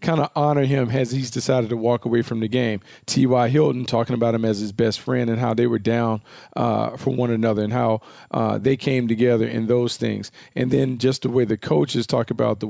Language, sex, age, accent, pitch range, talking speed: English, male, 40-59, American, 115-130 Hz, 235 wpm